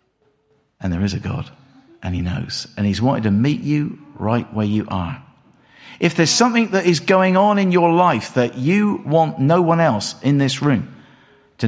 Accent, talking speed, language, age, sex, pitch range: British, 195 wpm, English, 50-69, male, 120-185 Hz